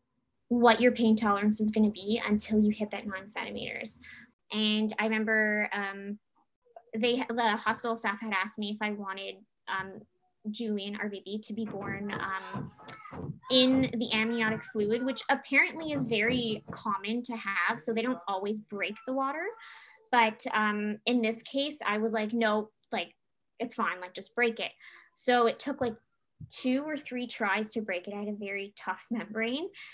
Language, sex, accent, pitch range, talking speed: English, female, American, 210-250 Hz, 170 wpm